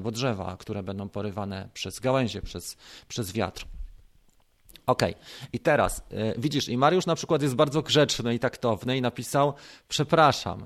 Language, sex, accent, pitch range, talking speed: Polish, male, native, 115-150 Hz, 150 wpm